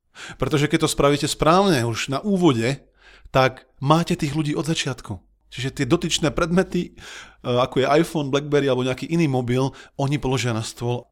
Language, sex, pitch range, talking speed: Slovak, male, 125-160 Hz, 160 wpm